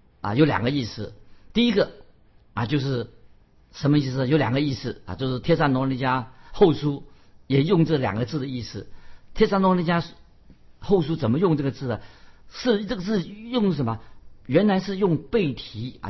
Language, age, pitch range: Chinese, 50-69, 110-155 Hz